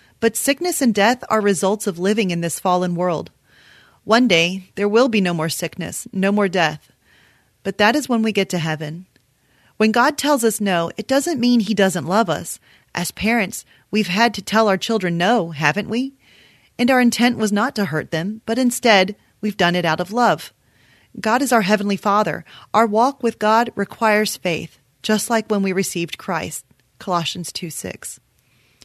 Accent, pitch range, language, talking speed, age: American, 175-225 Hz, English, 185 wpm, 30-49